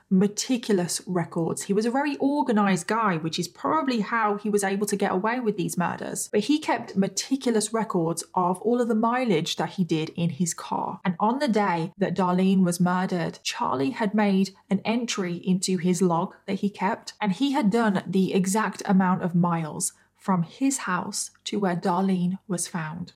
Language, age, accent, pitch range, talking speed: English, 20-39, British, 180-210 Hz, 190 wpm